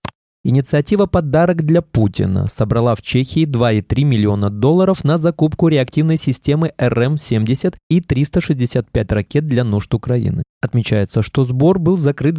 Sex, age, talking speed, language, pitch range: male, 20-39, 125 wpm, Russian, 110-150 Hz